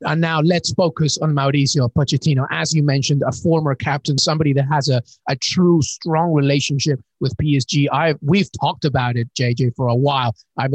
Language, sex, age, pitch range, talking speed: English, male, 30-49, 130-155 Hz, 185 wpm